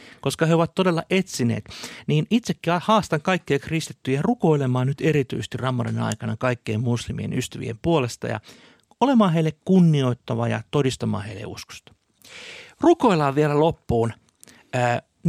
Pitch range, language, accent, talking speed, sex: 120-165 Hz, Finnish, native, 125 wpm, male